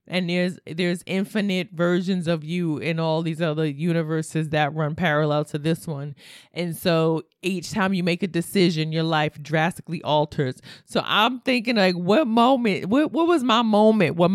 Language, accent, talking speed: English, American, 175 wpm